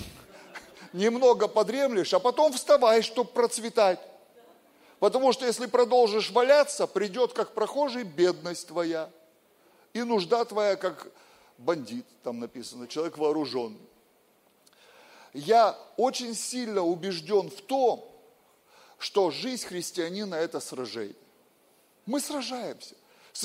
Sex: male